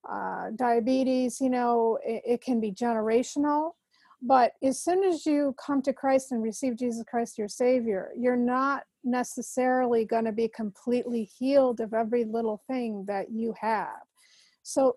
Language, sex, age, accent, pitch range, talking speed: English, female, 40-59, American, 230-265 Hz, 155 wpm